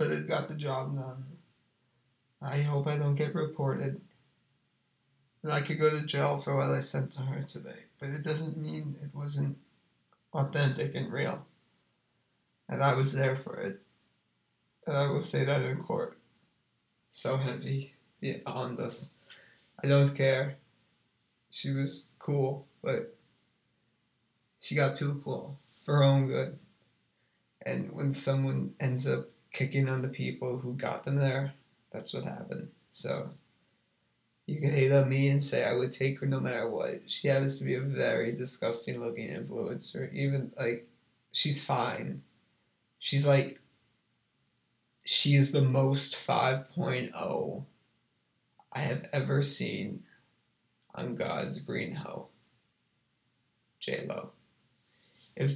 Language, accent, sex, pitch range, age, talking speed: English, American, male, 130-145 Hz, 20-39, 135 wpm